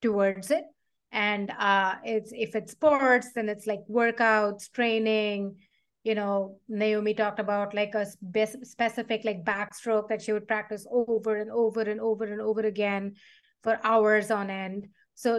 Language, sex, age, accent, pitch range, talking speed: English, female, 30-49, Indian, 205-235 Hz, 155 wpm